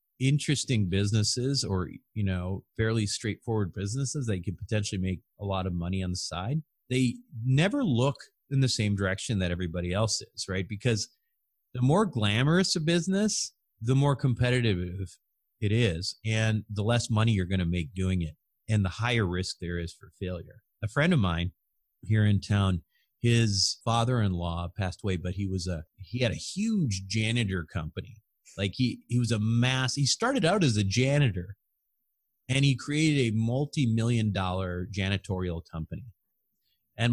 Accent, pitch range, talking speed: American, 95-130 Hz, 165 wpm